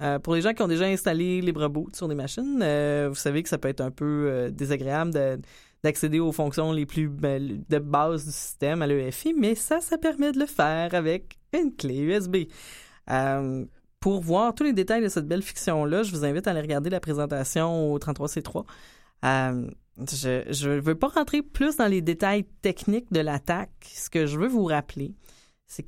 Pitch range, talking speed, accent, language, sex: 150-200 Hz, 200 wpm, Canadian, French, female